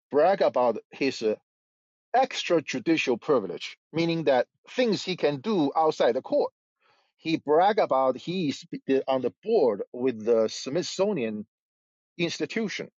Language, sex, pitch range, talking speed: English, male, 135-205 Hz, 120 wpm